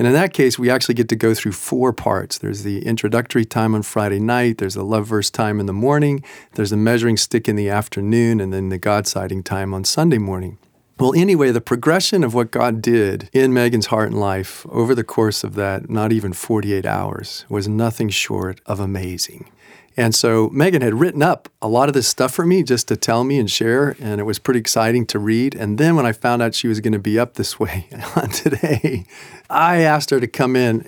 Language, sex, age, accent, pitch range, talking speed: English, male, 40-59, American, 105-135 Hz, 225 wpm